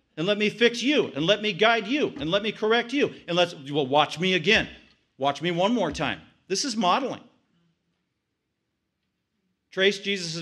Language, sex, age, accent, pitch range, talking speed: English, male, 50-69, American, 155-205 Hz, 180 wpm